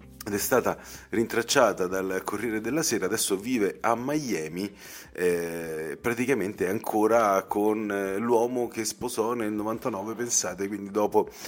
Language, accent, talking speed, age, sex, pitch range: Italian, native, 125 wpm, 30-49, male, 90-110 Hz